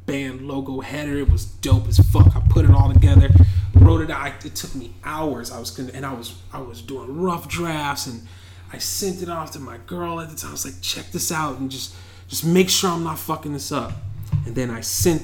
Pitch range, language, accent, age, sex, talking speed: 95-135 Hz, English, American, 30-49, male, 245 wpm